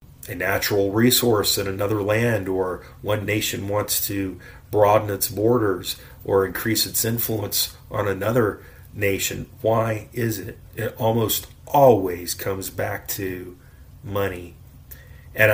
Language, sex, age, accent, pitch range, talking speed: English, male, 40-59, American, 100-120 Hz, 125 wpm